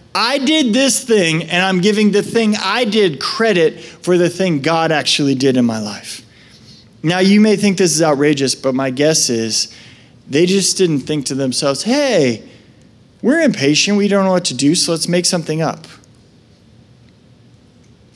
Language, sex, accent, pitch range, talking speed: English, male, American, 155-200 Hz, 175 wpm